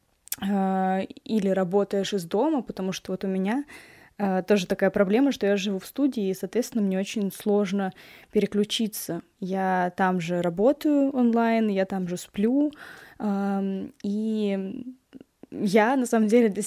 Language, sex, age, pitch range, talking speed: Russian, female, 10-29, 190-220 Hz, 135 wpm